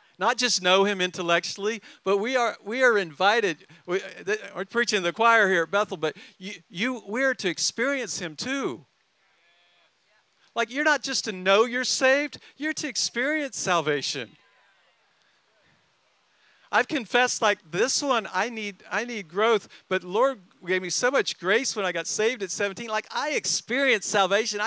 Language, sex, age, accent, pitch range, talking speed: English, male, 50-69, American, 185-230 Hz, 165 wpm